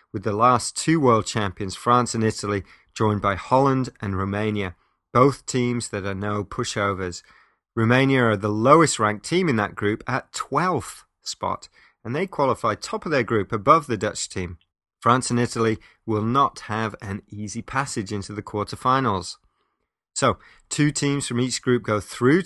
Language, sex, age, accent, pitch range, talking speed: English, male, 30-49, British, 105-125 Hz, 165 wpm